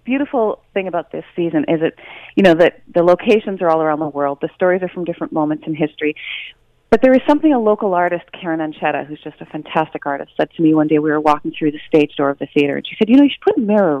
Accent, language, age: American, English, 40-59